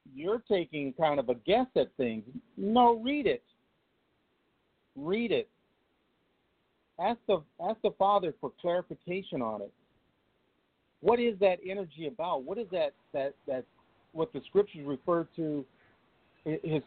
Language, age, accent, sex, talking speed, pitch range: English, 50-69, American, male, 135 wpm, 145-195 Hz